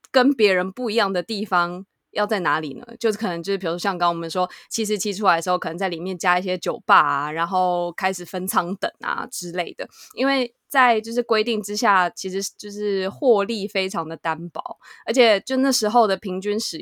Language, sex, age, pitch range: Chinese, female, 20-39, 180-220 Hz